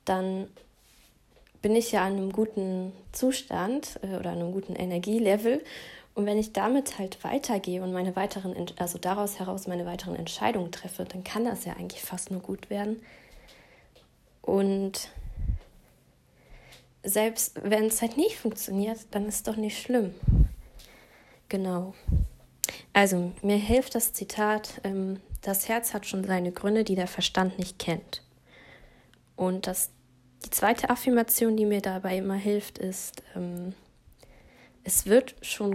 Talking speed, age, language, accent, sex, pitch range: 140 wpm, 20-39, German, German, female, 180-215 Hz